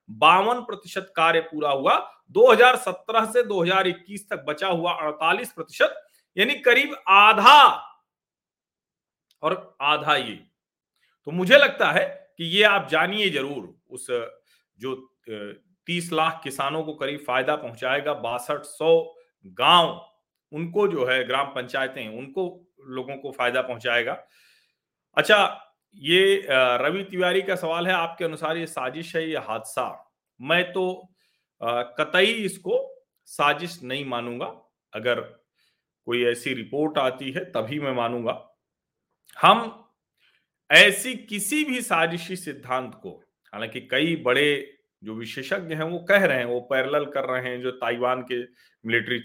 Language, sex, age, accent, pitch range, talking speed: Hindi, male, 40-59, native, 130-190 Hz, 125 wpm